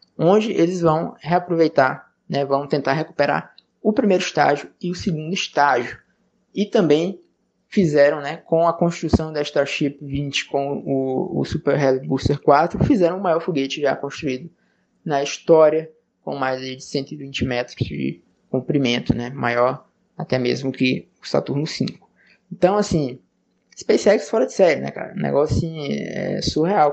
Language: Portuguese